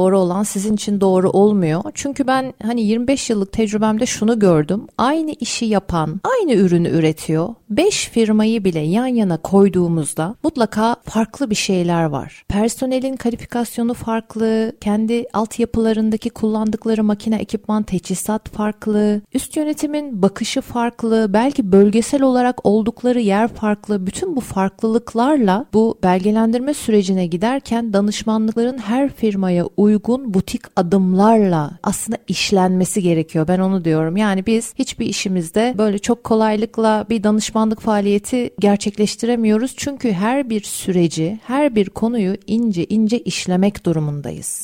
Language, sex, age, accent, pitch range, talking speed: Turkish, female, 40-59, native, 190-240 Hz, 125 wpm